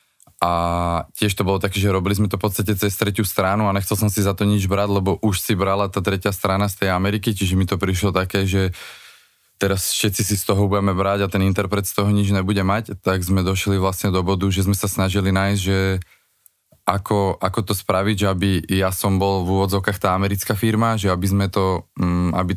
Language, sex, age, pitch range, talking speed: Slovak, male, 20-39, 90-100 Hz, 225 wpm